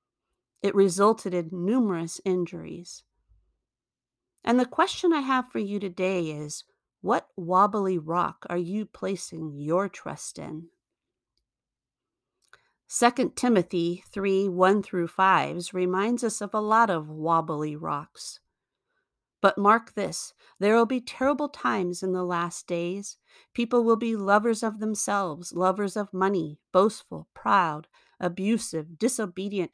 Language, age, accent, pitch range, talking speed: English, 50-69, American, 170-210 Hz, 125 wpm